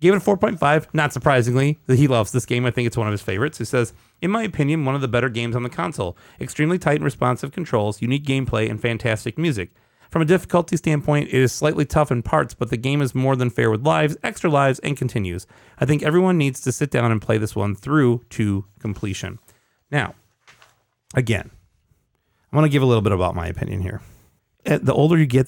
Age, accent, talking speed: 30-49, American, 225 wpm